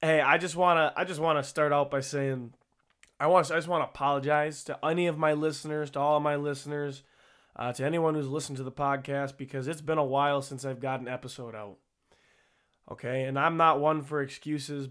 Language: English